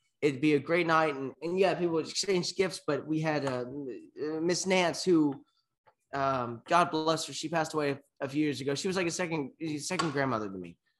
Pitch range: 125-160 Hz